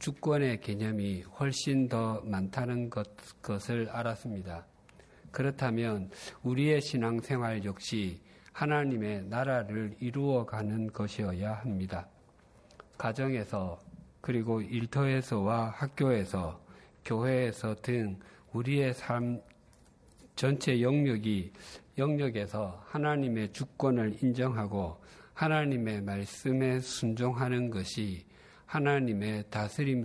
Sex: male